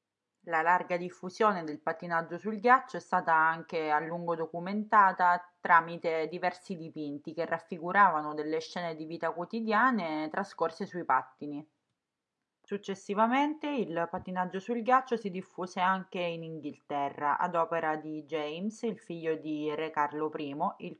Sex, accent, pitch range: female, native, 160-200 Hz